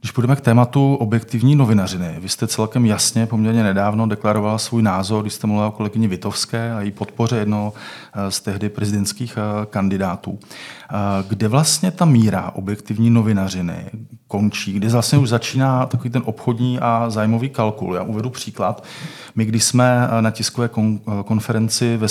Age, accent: 40-59, native